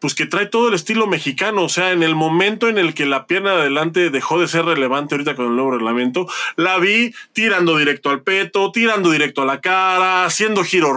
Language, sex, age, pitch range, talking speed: Spanish, male, 20-39, 140-185 Hz, 225 wpm